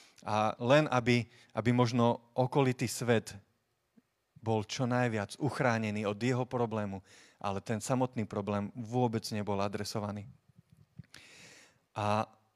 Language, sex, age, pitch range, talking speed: Slovak, male, 30-49, 115-145 Hz, 105 wpm